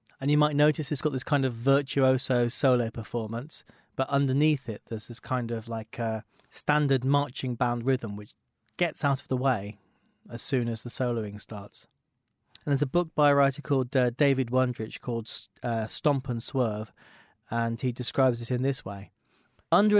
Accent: British